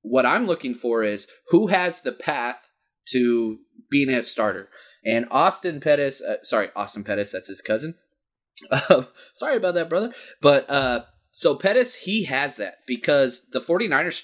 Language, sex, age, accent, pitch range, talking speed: English, male, 30-49, American, 110-135 Hz, 160 wpm